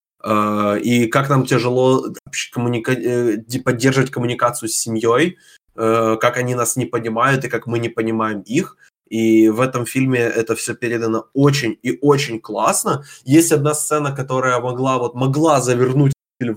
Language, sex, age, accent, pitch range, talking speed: Ukrainian, male, 20-39, native, 115-140 Hz, 150 wpm